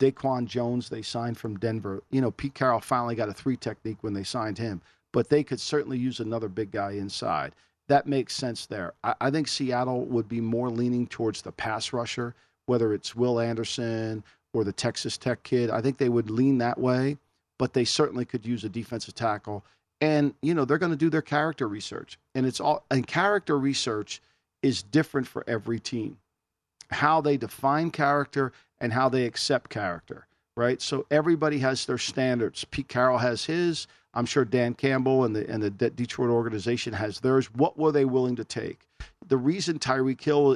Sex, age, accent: male, 50-69, American